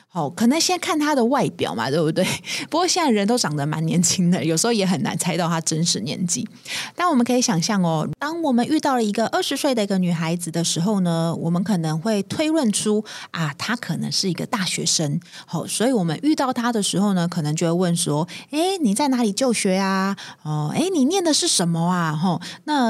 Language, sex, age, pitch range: Chinese, female, 30-49, 175-255 Hz